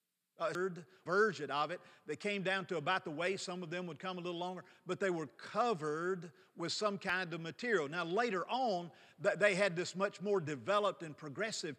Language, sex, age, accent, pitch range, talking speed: English, male, 50-69, American, 170-205 Hz, 200 wpm